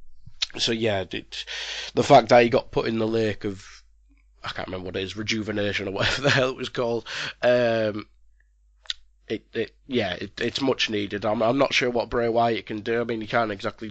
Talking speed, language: 205 wpm, English